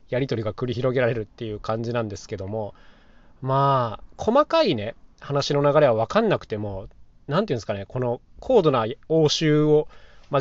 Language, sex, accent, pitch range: Japanese, male, native, 110-150 Hz